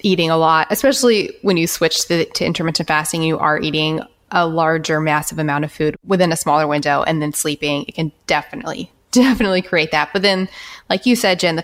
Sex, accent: female, American